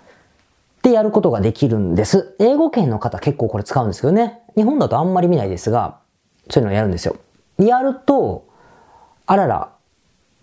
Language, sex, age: Japanese, female, 40-59